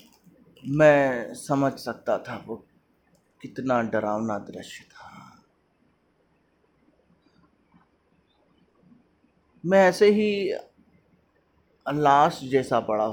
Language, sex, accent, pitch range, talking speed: Hindi, male, native, 125-170 Hz, 70 wpm